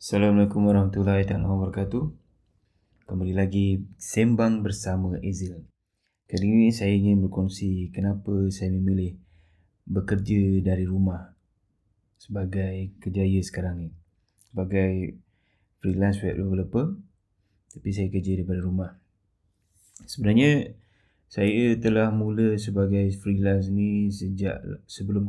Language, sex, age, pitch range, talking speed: Malay, male, 20-39, 95-105 Hz, 95 wpm